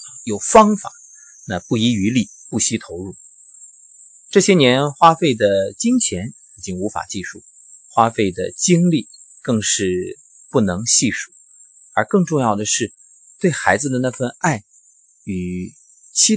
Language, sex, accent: Chinese, male, native